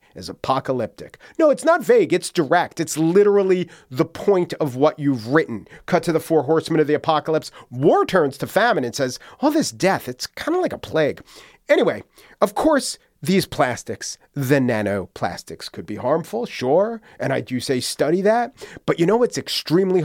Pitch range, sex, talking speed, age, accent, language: 125-180 Hz, male, 185 wpm, 40-59, American, English